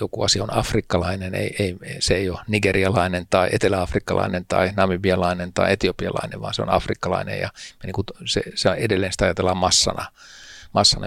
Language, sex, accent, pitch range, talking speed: Finnish, male, native, 90-105 Hz, 165 wpm